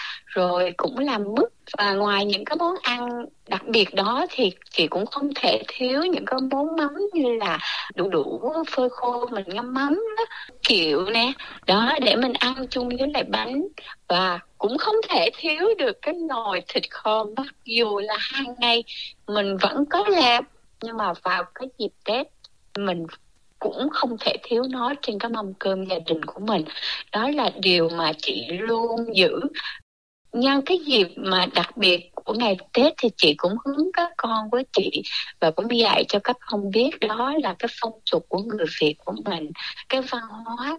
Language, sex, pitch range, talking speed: Vietnamese, female, 195-270 Hz, 185 wpm